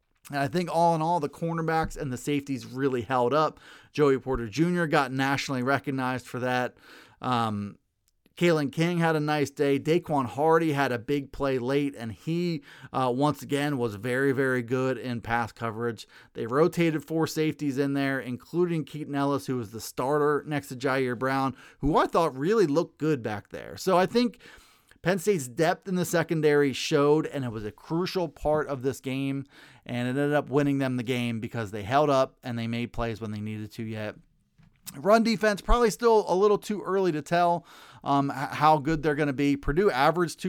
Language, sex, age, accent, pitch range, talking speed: English, male, 30-49, American, 130-165 Hz, 195 wpm